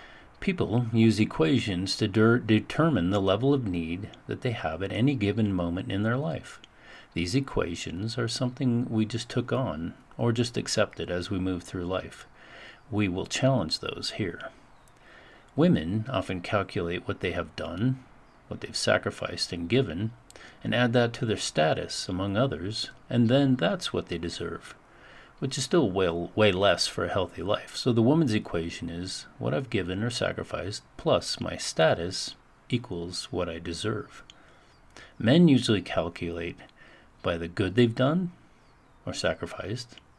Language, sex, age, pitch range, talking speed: English, male, 50-69, 90-120 Hz, 155 wpm